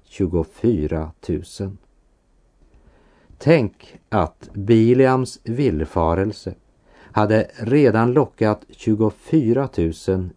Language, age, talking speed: French, 50-69, 65 wpm